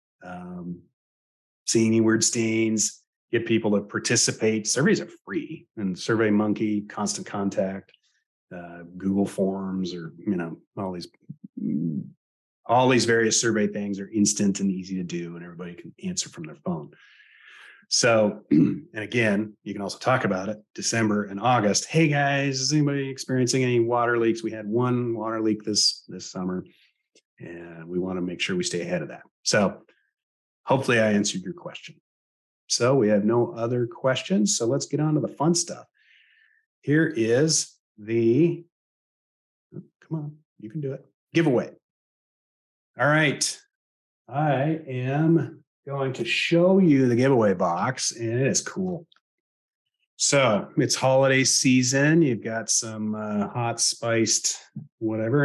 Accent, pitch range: American, 105-140 Hz